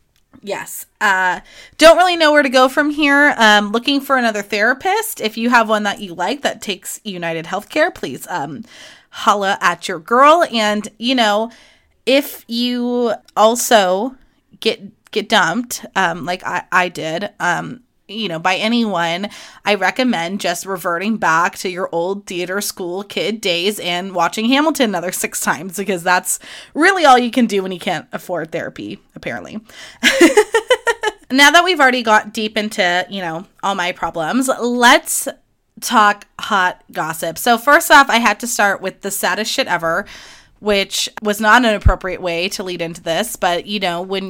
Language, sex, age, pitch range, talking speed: English, female, 20-39, 185-245 Hz, 170 wpm